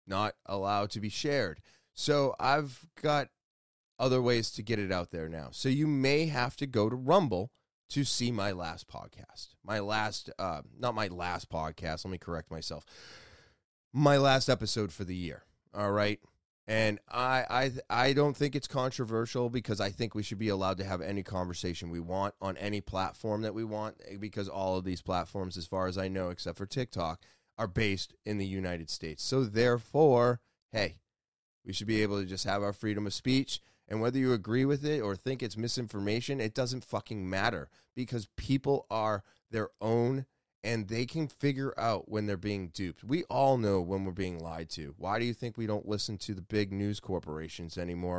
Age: 30-49